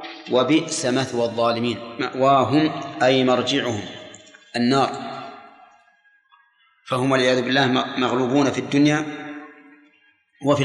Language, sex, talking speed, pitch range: Arabic, male, 80 wpm, 125-150 Hz